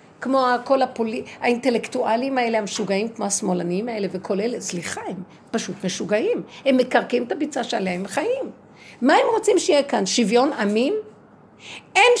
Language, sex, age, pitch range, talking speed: Hebrew, female, 50-69, 215-305 Hz, 150 wpm